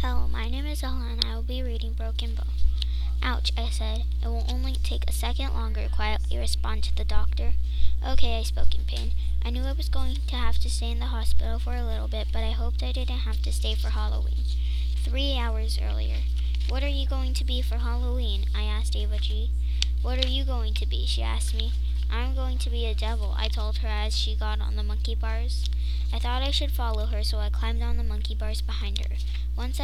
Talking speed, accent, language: 230 wpm, American, English